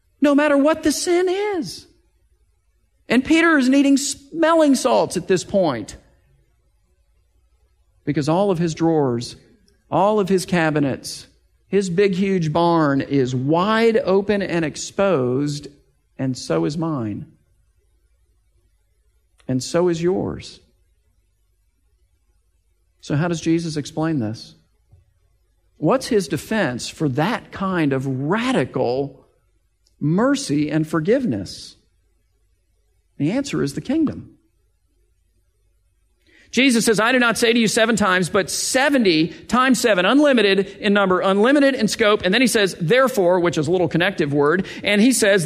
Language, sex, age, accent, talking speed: English, male, 50-69, American, 130 wpm